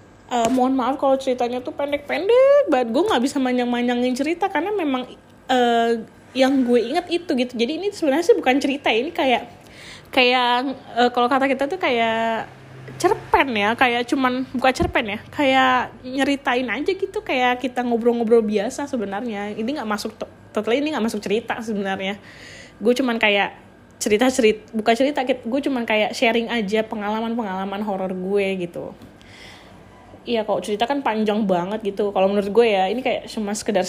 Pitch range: 210-255 Hz